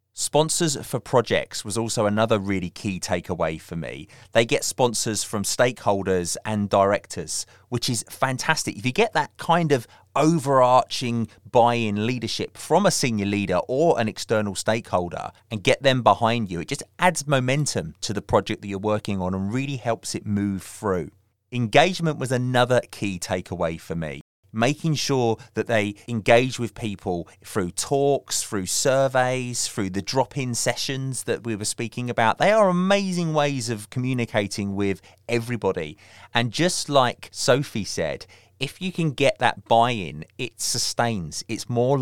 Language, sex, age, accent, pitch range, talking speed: English, male, 30-49, British, 100-130 Hz, 155 wpm